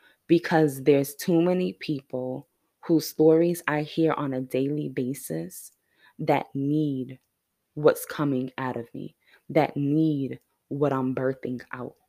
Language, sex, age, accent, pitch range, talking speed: English, female, 20-39, American, 140-165 Hz, 130 wpm